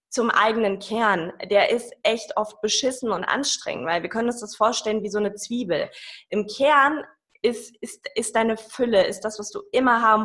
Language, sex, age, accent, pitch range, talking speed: German, female, 20-39, German, 200-245 Hz, 195 wpm